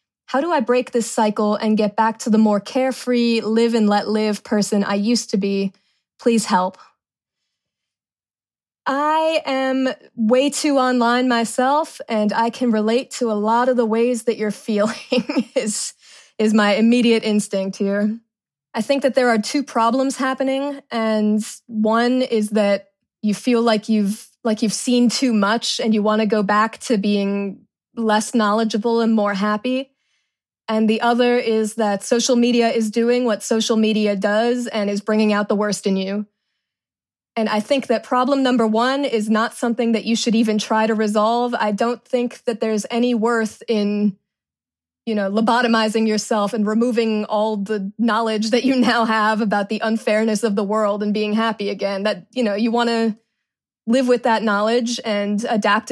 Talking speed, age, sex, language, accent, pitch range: 170 wpm, 20-39, female, English, American, 210-245 Hz